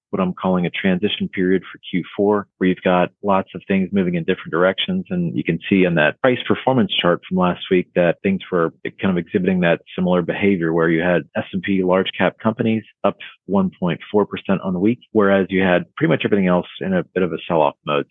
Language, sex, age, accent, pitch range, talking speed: English, male, 40-59, American, 90-105 Hz, 215 wpm